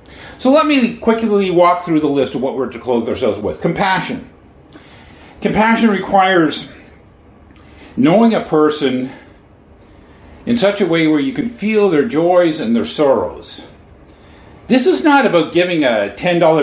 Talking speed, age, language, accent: 145 wpm, 50-69, English, American